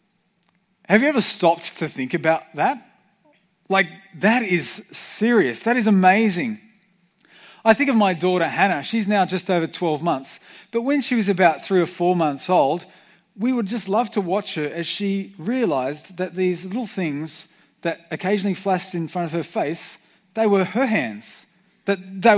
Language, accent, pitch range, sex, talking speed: English, Australian, 175-215 Hz, male, 175 wpm